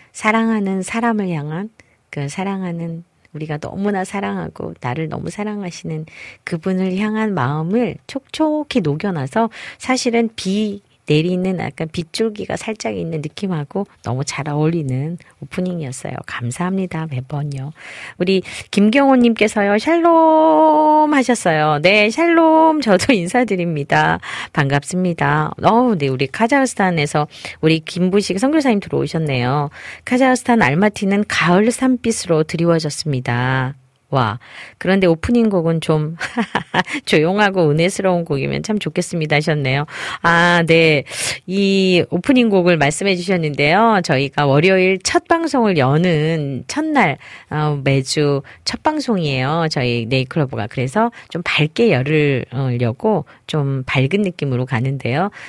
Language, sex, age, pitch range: Korean, female, 40-59, 145-210 Hz